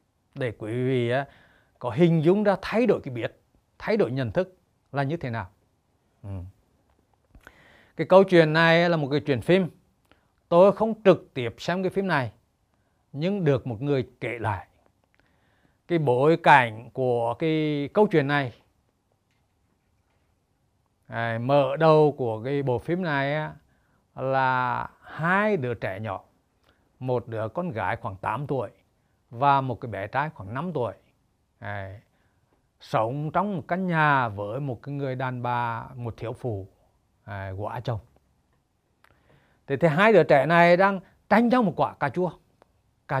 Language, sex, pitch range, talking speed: Vietnamese, male, 110-165 Hz, 150 wpm